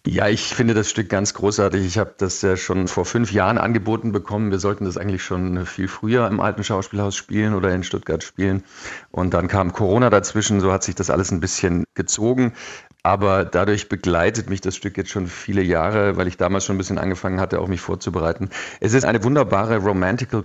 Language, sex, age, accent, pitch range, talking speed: German, male, 50-69, German, 95-105 Hz, 210 wpm